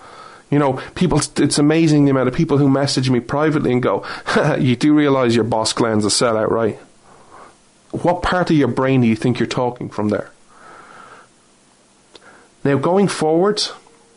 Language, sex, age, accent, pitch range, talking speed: English, male, 30-49, Irish, 115-160 Hz, 165 wpm